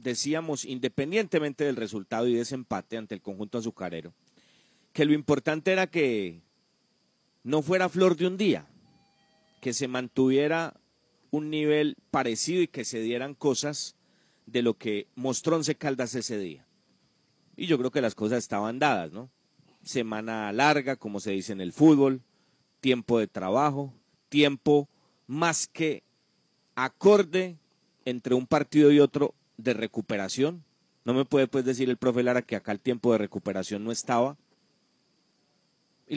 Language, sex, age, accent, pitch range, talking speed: Spanish, male, 40-59, Colombian, 120-155 Hz, 150 wpm